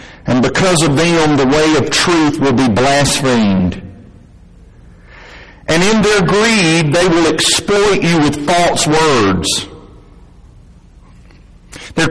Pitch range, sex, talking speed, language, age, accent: 135-180 Hz, male, 115 wpm, English, 60-79, American